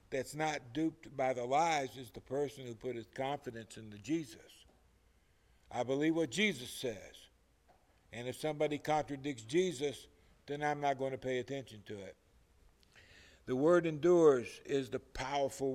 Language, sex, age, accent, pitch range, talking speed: English, male, 60-79, American, 120-150 Hz, 150 wpm